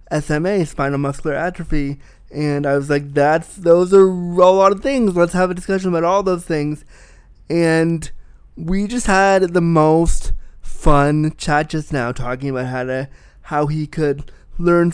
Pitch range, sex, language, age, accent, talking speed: 150-185 Hz, male, English, 20-39, American, 165 wpm